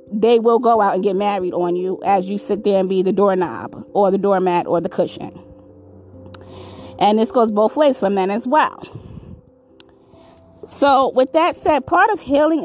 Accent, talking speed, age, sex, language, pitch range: American, 185 wpm, 30-49, female, English, 180-250 Hz